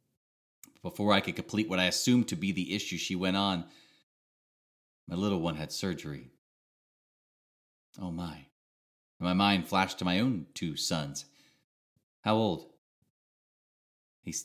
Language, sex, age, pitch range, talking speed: English, male, 30-49, 75-110 Hz, 135 wpm